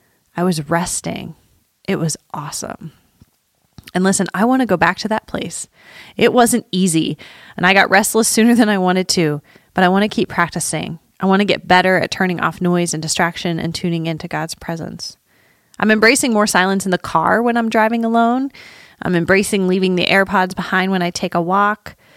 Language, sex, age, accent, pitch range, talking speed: English, female, 30-49, American, 170-205 Hz, 200 wpm